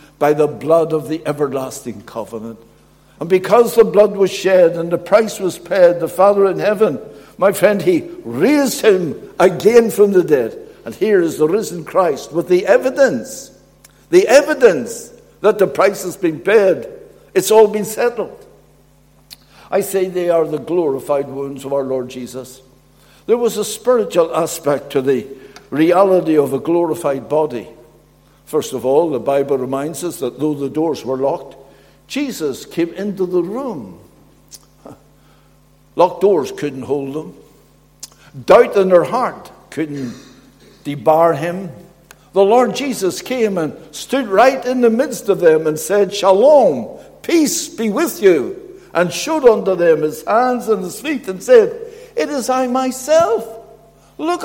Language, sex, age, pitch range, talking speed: English, male, 60-79, 155-255 Hz, 155 wpm